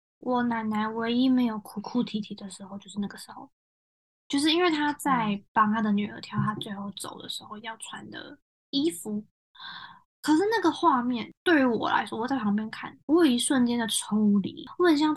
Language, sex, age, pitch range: Chinese, female, 10-29, 210-295 Hz